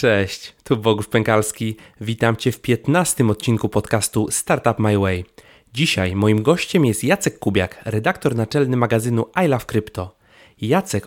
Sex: male